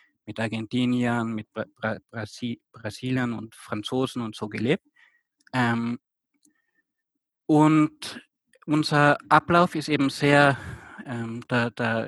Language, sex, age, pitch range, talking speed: German, male, 20-39, 115-145 Hz, 115 wpm